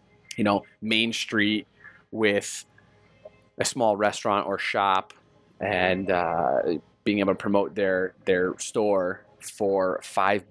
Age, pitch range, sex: 20-39, 95-105 Hz, male